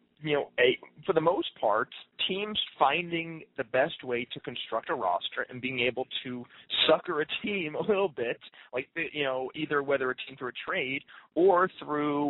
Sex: male